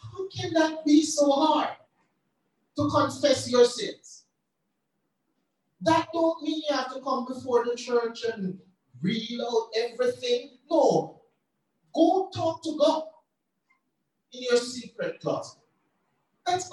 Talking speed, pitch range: 120 wpm, 260-330 Hz